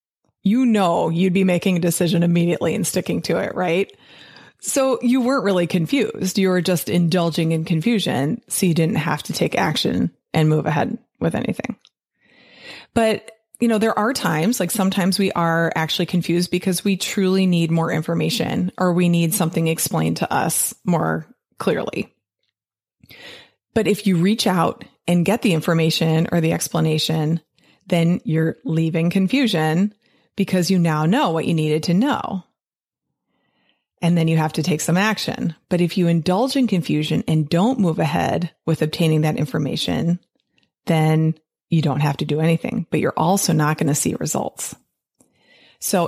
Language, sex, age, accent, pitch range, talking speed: English, female, 20-39, American, 160-195 Hz, 165 wpm